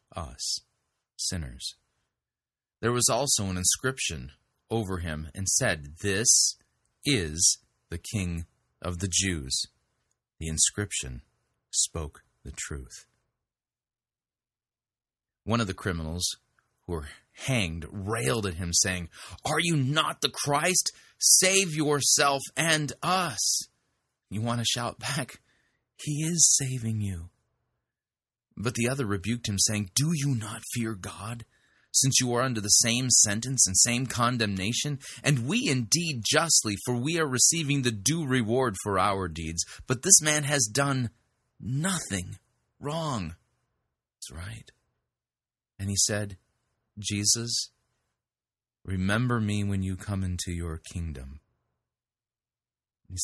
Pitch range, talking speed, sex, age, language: 95-130 Hz, 125 wpm, male, 30-49, English